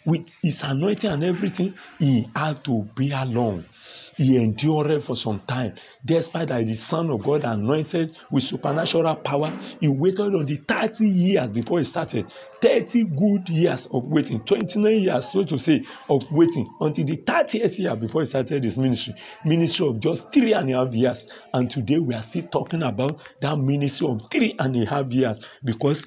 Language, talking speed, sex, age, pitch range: English, 185 wpm, male, 50-69, 125-170 Hz